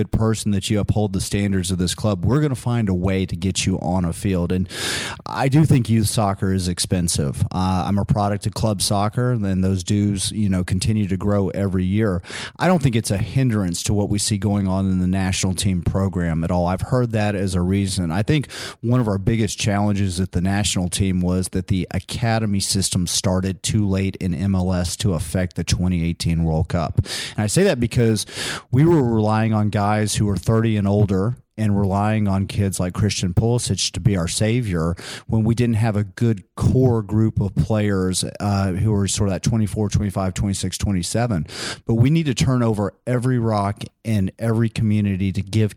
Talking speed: 205 wpm